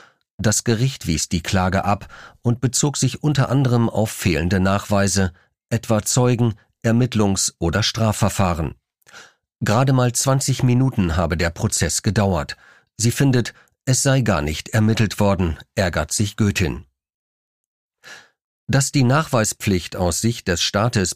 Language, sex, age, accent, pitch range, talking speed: German, male, 40-59, German, 95-125 Hz, 130 wpm